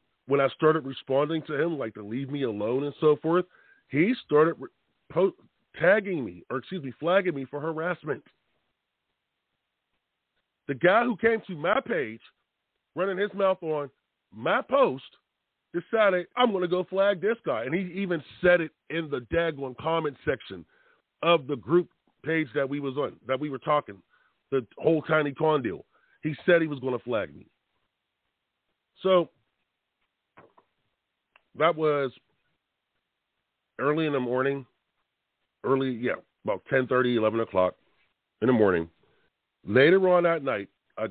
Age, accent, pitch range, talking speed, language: 40-59, American, 130-170 Hz, 150 wpm, English